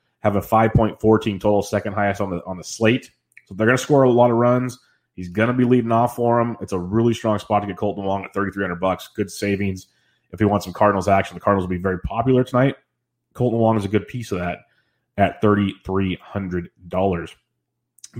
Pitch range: 100-120 Hz